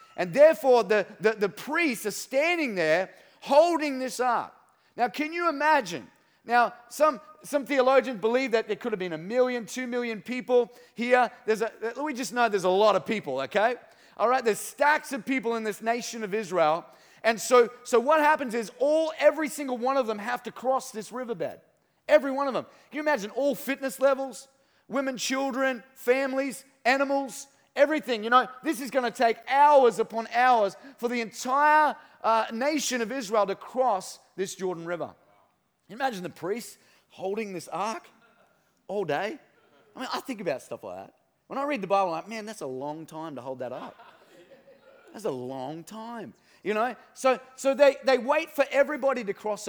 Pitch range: 225-280 Hz